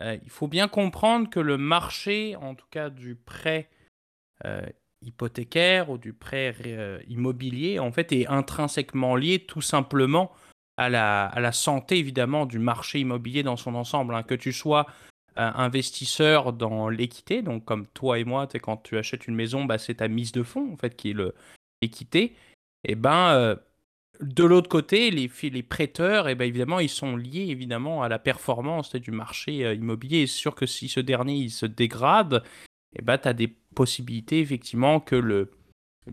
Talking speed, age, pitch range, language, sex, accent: 180 wpm, 20-39, 115-145 Hz, French, male, French